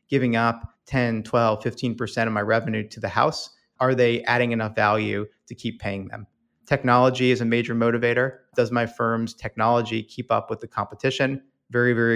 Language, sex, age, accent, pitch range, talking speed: English, male, 30-49, American, 115-125 Hz, 180 wpm